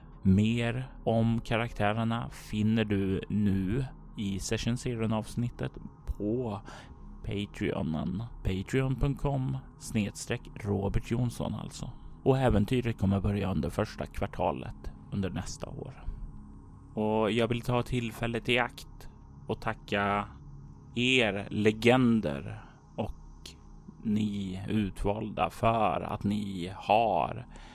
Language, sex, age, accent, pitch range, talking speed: Swedish, male, 30-49, native, 100-120 Hz, 95 wpm